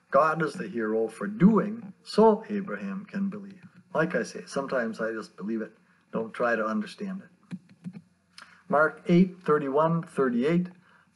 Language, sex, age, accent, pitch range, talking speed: English, male, 50-69, American, 160-200 Hz, 145 wpm